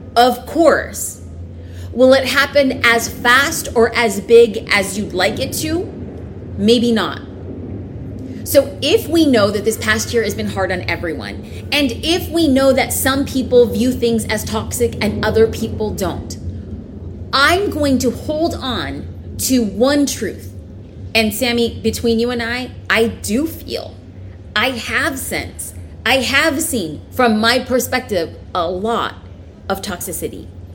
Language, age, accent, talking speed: English, 30-49, American, 145 wpm